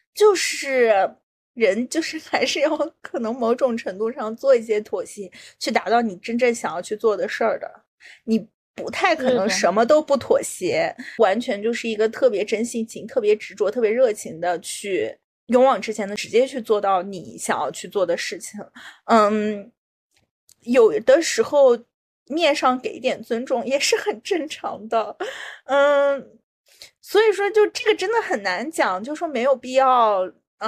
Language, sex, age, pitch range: Chinese, female, 30-49, 220-295 Hz